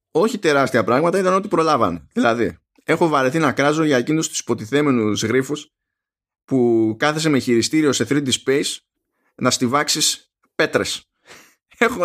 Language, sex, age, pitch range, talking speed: Greek, male, 20-39, 115-155 Hz, 135 wpm